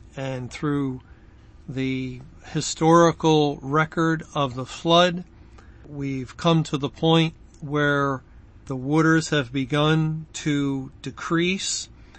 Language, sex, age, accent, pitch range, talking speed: English, male, 50-69, American, 130-155 Hz, 100 wpm